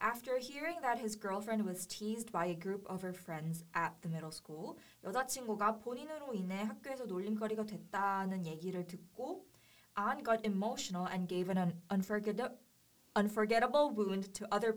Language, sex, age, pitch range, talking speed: English, female, 20-39, 180-225 Hz, 145 wpm